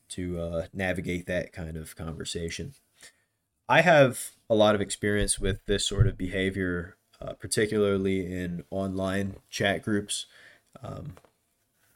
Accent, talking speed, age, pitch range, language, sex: American, 125 wpm, 20-39, 95-115 Hz, English, male